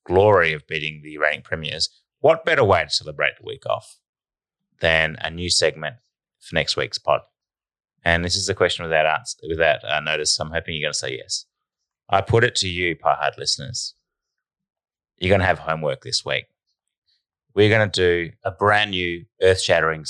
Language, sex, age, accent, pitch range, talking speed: English, male, 30-49, Australian, 80-95 Hz, 185 wpm